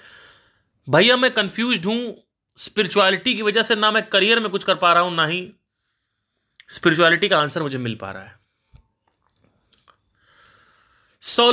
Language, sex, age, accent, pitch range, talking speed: Hindi, male, 30-49, native, 125-205 Hz, 145 wpm